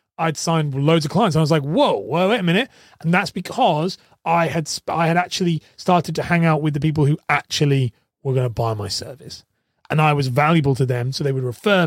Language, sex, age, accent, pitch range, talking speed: English, male, 30-49, British, 150-190 Hz, 240 wpm